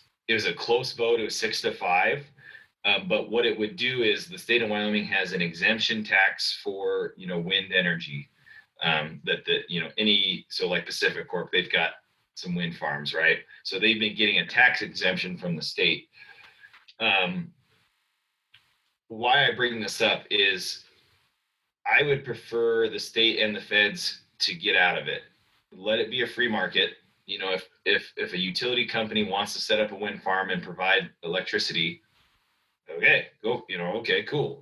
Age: 30-49